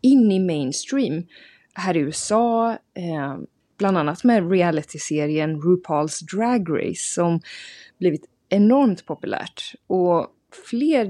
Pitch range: 165-225 Hz